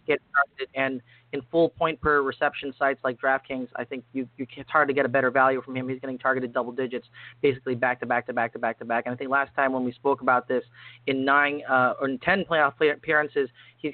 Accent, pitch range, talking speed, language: American, 125-145 Hz, 260 wpm, English